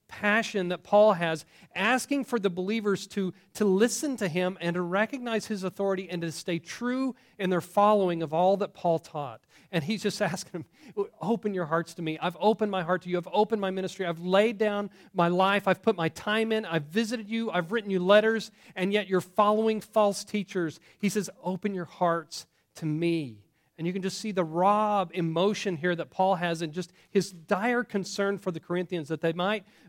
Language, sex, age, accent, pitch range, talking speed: English, male, 40-59, American, 155-200 Hz, 205 wpm